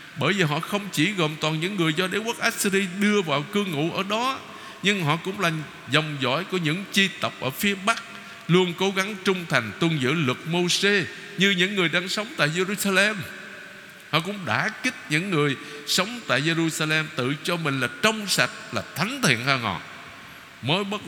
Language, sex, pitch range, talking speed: Vietnamese, male, 150-200 Hz, 200 wpm